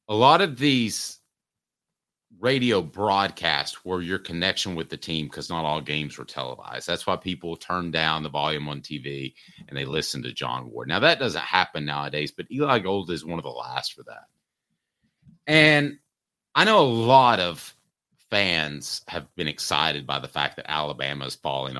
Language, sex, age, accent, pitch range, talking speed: English, male, 30-49, American, 75-105 Hz, 180 wpm